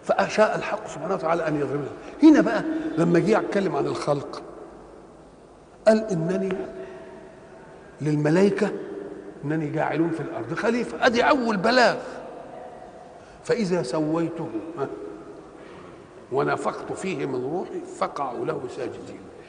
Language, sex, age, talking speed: Arabic, male, 50-69, 105 wpm